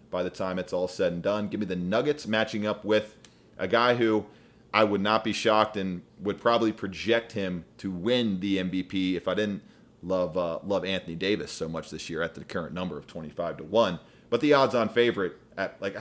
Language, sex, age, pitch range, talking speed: English, male, 30-49, 100-115 Hz, 220 wpm